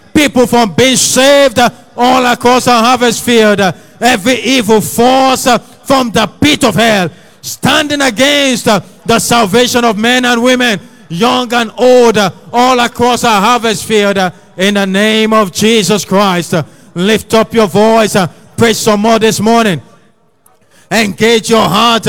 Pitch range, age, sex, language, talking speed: 210-240 Hz, 50-69, male, English, 160 wpm